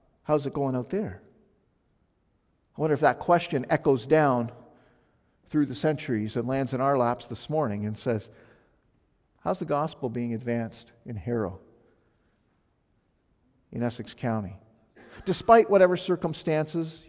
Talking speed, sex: 130 wpm, male